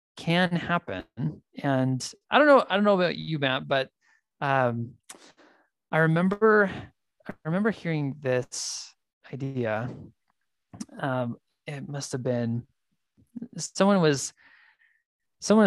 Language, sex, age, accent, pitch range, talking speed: English, male, 20-39, American, 125-165 Hz, 105 wpm